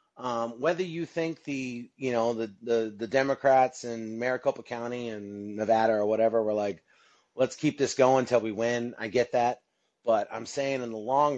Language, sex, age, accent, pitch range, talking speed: English, male, 30-49, American, 110-140 Hz, 200 wpm